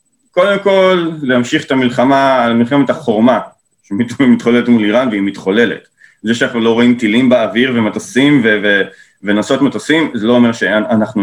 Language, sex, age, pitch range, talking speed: Hebrew, male, 30-49, 110-155 Hz, 145 wpm